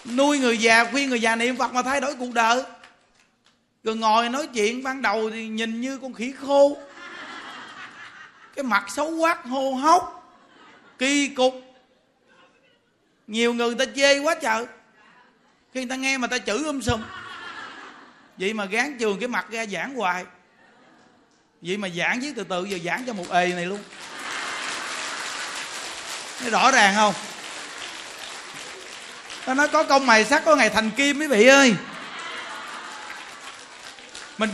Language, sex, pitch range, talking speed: Vietnamese, male, 215-275 Hz, 155 wpm